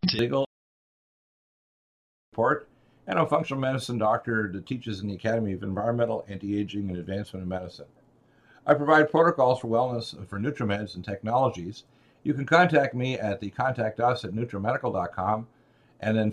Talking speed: 140 wpm